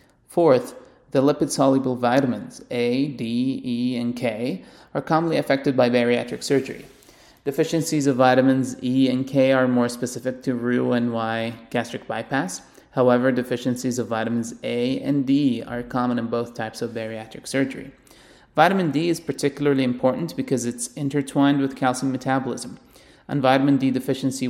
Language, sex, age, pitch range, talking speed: English, male, 30-49, 120-140 Hz, 145 wpm